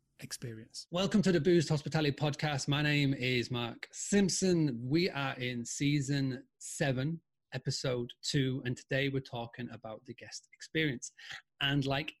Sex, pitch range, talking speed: male, 125-150 Hz, 145 wpm